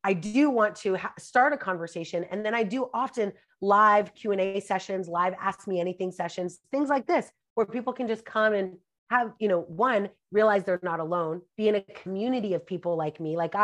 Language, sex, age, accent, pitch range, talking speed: English, female, 30-49, American, 175-225 Hz, 205 wpm